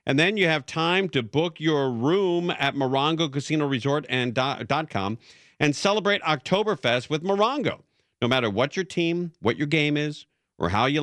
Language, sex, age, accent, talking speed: English, male, 50-69, American, 185 wpm